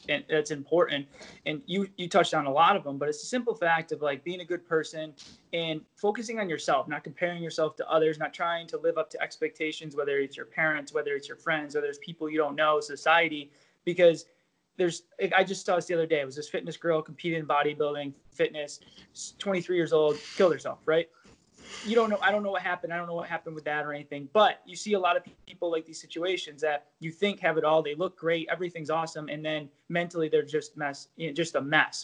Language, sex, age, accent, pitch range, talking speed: English, male, 20-39, American, 150-180 Hz, 240 wpm